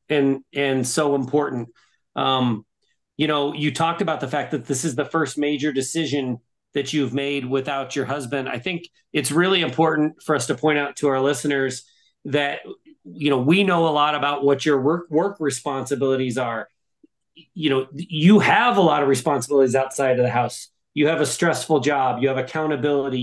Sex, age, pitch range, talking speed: male, 40-59, 130-160 Hz, 185 wpm